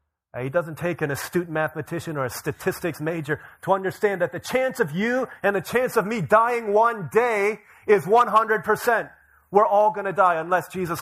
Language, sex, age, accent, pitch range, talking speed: English, male, 30-49, American, 115-190 Hz, 185 wpm